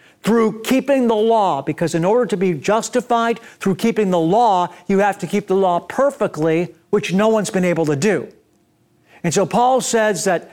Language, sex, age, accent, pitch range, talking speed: English, male, 50-69, American, 180-230 Hz, 190 wpm